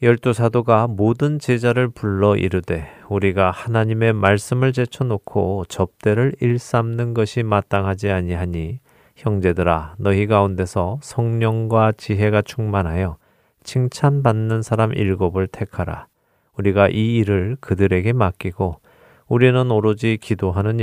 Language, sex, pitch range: Korean, male, 95-115 Hz